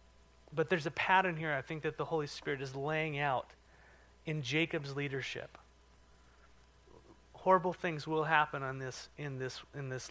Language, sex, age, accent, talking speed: English, male, 30-49, American, 160 wpm